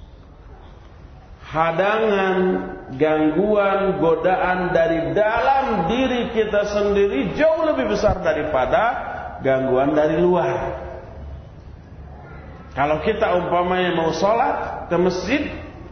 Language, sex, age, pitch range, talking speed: Malay, male, 40-59, 130-210 Hz, 85 wpm